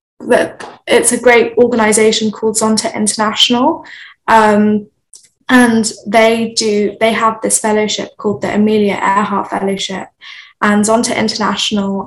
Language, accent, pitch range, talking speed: English, British, 205-225 Hz, 120 wpm